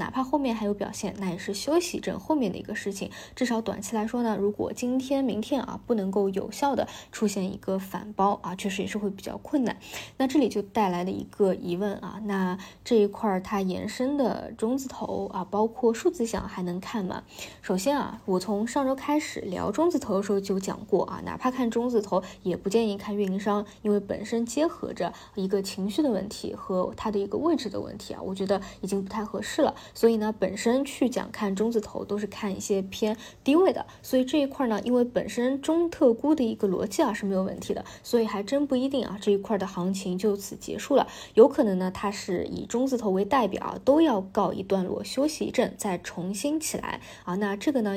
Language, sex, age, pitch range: Chinese, female, 20-39, 195-245 Hz